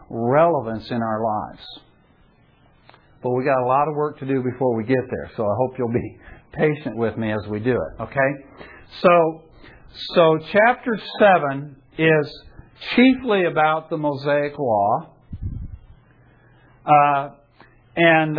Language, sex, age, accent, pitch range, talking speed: English, male, 60-79, American, 130-170 Hz, 135 wpm